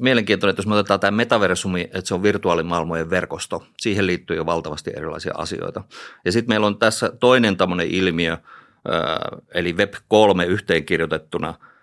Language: Finnish